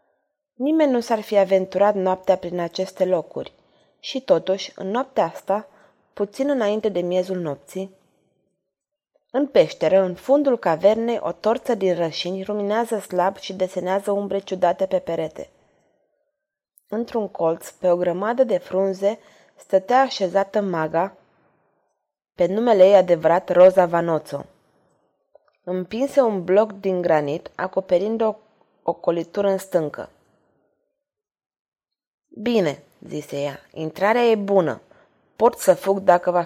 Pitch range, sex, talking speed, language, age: 175-210 Hz, female, 120 wpm, Romanian, 20-39